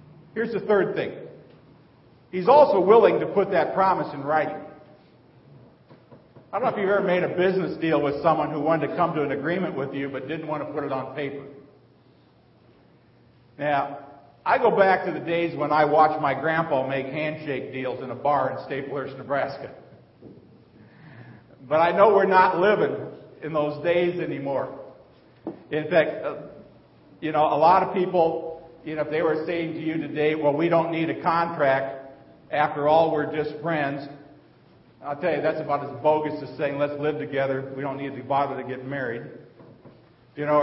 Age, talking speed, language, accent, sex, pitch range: 50-69, 180 wpm, English, American, male, 140-165 Hz